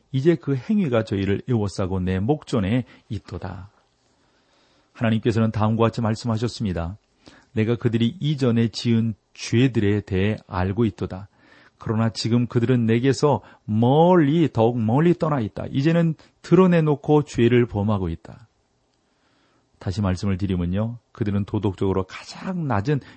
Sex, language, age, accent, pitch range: male, Korean, 40-59, native, 100-130 Hz